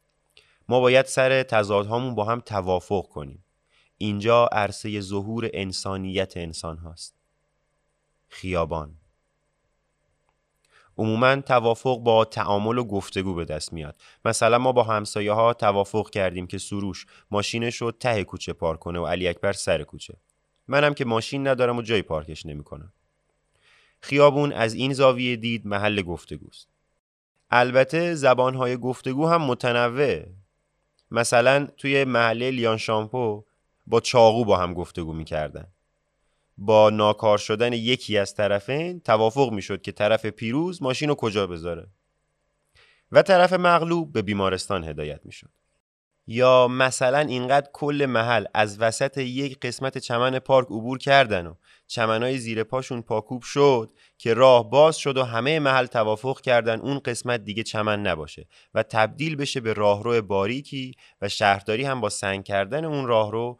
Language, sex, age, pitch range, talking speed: Persian, male, 30-49, 100-130 Hz, 140 wpm